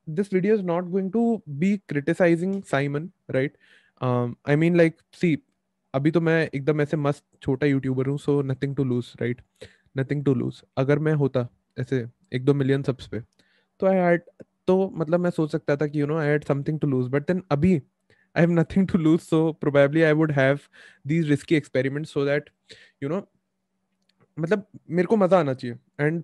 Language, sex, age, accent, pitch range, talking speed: English, male, 20-39, Indian, 140-170 Hz, 165 wpm